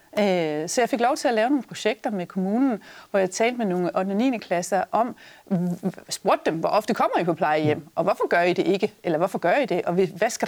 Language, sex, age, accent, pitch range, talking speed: Danish, female, 30-49, native, 190-235 Hz, 240 wpm